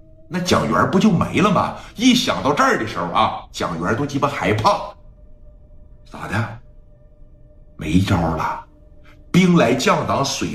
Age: 50-69